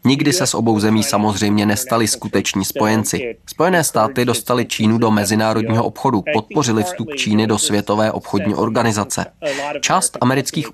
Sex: male